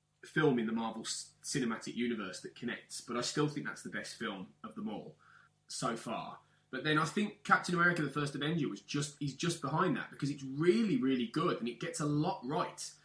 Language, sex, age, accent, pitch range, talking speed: English, male, 20-39, British, 125-170 Hz, 210 wpm